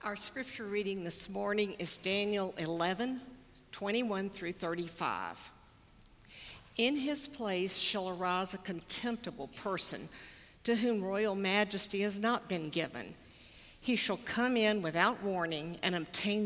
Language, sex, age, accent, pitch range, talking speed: English, female, 50-69, American, 185-230 Hz, 130 wpm